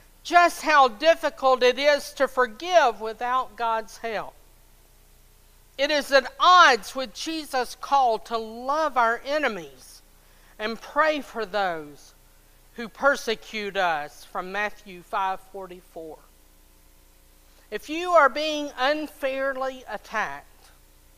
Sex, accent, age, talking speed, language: female, American, 50-69, 105 wpm, English